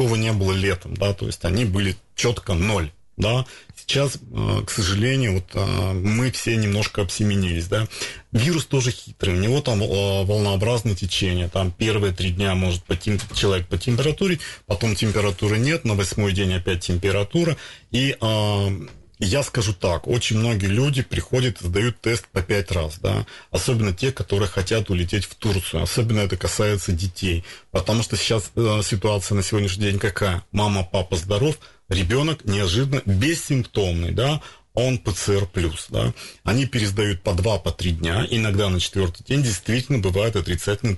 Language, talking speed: Russian, 150 wpm